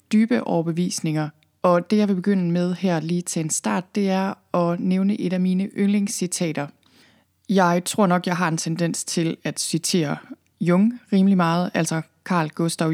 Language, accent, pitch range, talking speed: Danish, native, 170-205 Hz, 170 wpm